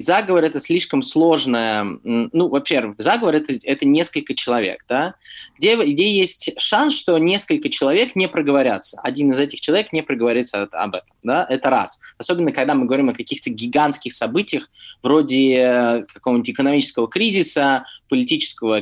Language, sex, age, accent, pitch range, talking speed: Russian, male, 20-39, native, 135-205 Hz, 145 wpm